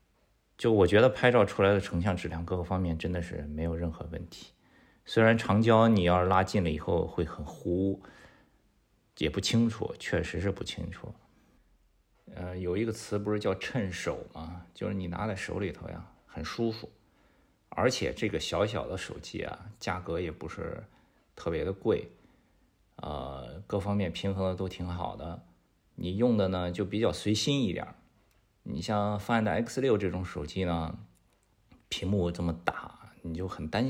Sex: male